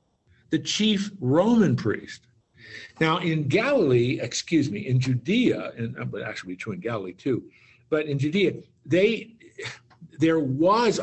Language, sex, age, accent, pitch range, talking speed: English, male, 50-69, American, 120-165 Hz, 120 wpm